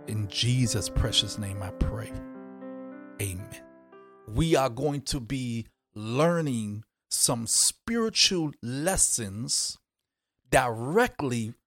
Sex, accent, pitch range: male, American, 115-155 Hz